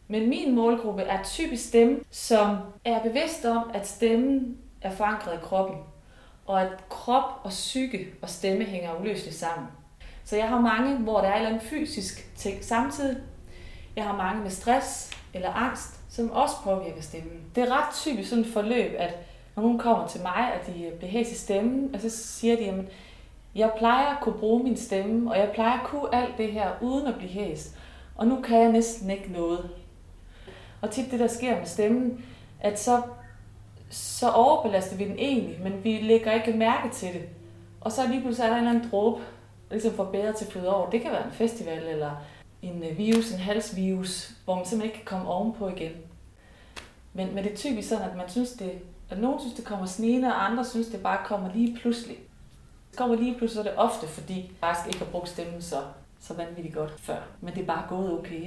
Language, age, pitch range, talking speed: Danish, 30-49, 180-235 Hz, 205 wpm